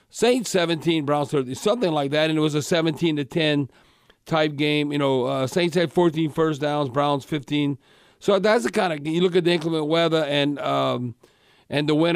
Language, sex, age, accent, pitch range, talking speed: English, male, 50-69, American, 155-190 Hz, 210 wpm